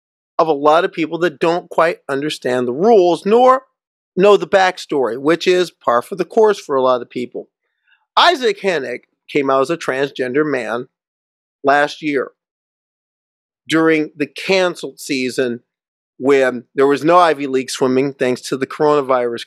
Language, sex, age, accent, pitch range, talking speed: English, male, 40-59, American, 135-185 Hz, 155 wpm